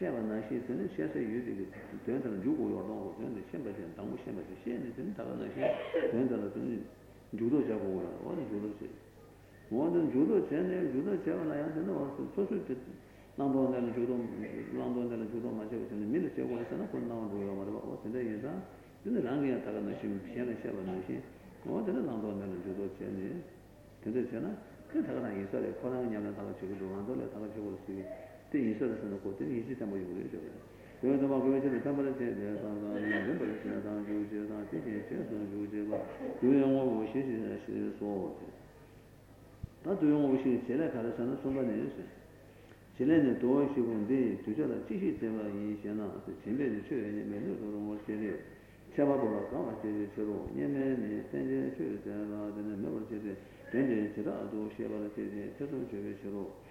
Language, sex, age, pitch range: Italian, male, 60-79, 100-125 Hz